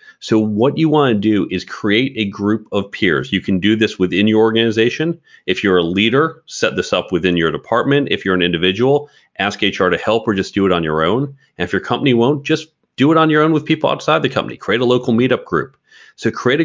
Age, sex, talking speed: 40-59, male, 240 wpm